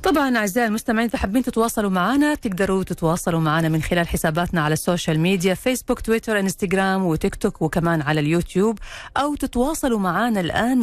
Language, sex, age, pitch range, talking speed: Arabic, female, 40-59, 165-240 Hz, 155 wpm